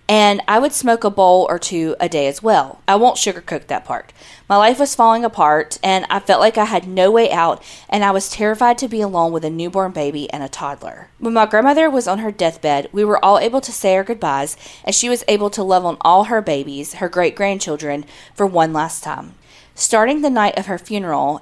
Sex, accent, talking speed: female, American, 235 wpm